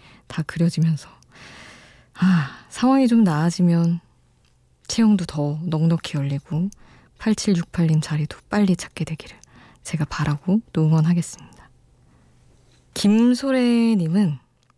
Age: 20-39